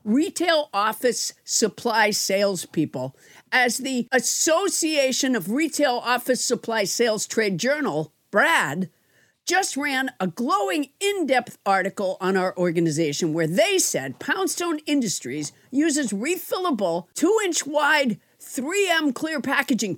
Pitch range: 200-315 Hz